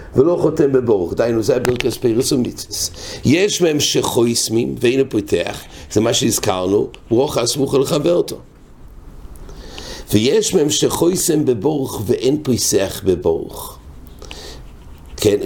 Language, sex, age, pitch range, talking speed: English, male, 60-79, 100-130 Hz, 110 wpm